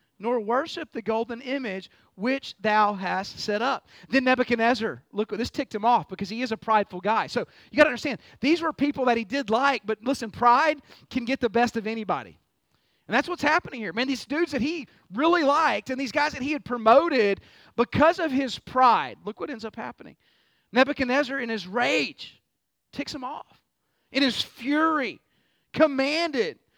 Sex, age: male, 30-49